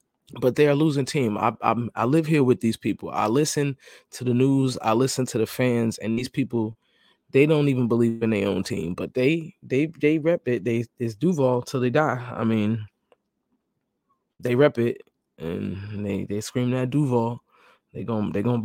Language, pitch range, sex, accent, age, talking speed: English, 115-130 Hz, male, American, 20-39, 200 wpm